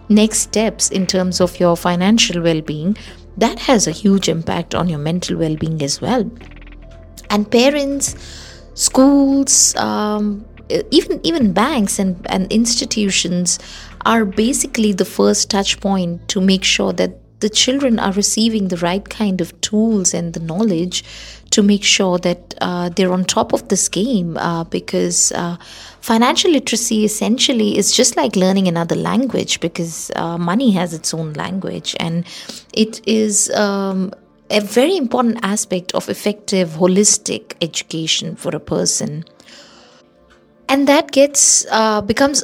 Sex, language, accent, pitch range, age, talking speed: female, English, Indian, 165-215 Hz, 20-39, 145 wpm